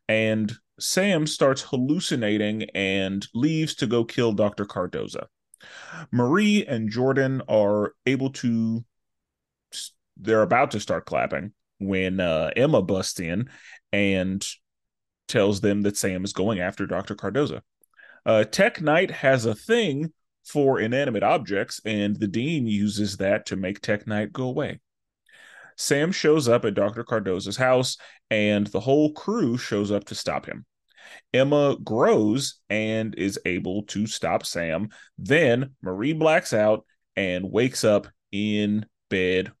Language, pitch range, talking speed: English, 100-140 Hz, 135 wpm